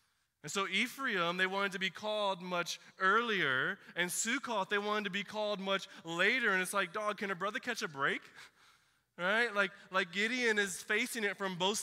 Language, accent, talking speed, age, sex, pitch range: English, American, 195 wpm, 20-39, male, 155-220 Hz